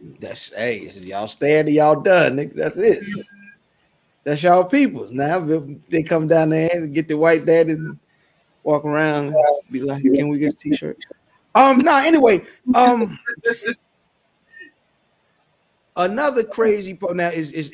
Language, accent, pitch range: English, American, 125-170 Hz